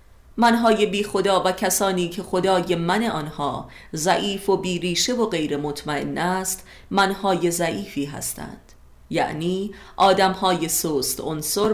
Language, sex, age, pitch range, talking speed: Persian, female, 40-59, 140-195 Hz, 120 wpm